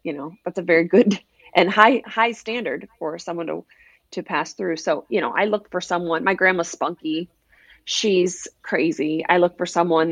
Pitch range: 165-205 Hz